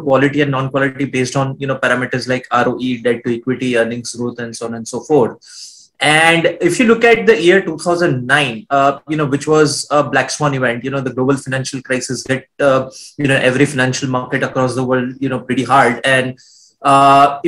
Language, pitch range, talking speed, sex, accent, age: English, 135-175 Hz, 210 wpm, male, Indian, 20-39